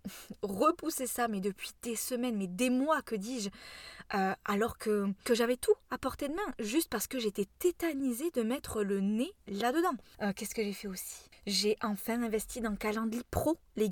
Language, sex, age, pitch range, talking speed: French, female, 20-39, 210-265 Hz, 195 wpm